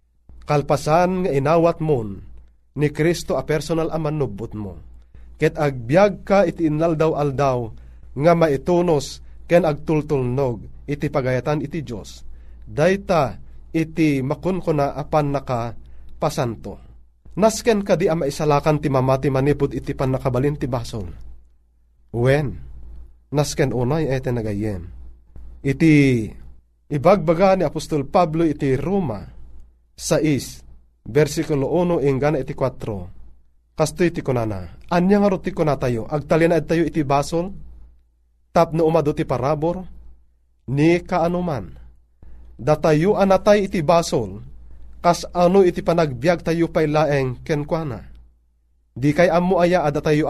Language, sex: Filipino, male